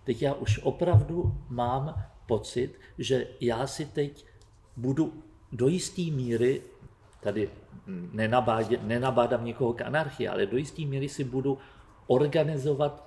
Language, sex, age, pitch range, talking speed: Czech, male, 50-69, 115-140 Hz, 125 wpm